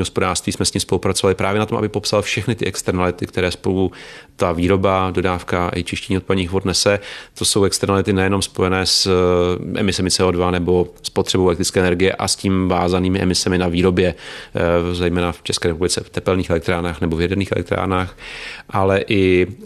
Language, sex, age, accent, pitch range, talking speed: Czech, male, 30-49, native, 90-100 Hz, 165 wpm